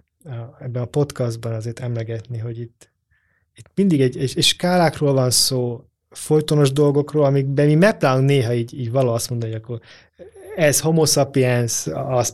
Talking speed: 150 wpm